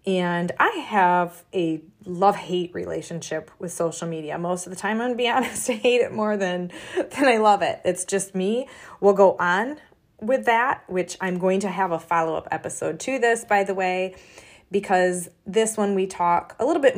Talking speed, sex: 200 wpm, female